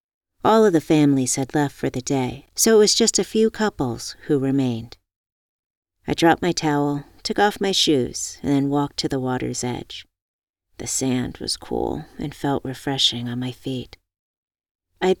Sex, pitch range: female, 125-175 Hz